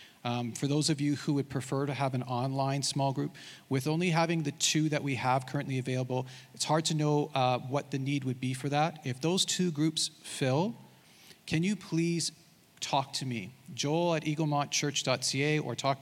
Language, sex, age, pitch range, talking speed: English, male, 40-59, 125-150 Hz, 195 wpm